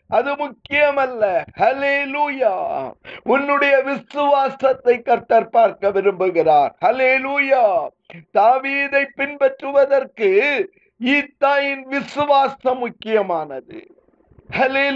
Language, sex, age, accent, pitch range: Tamil, male, 50-69, native, 260-290 Hz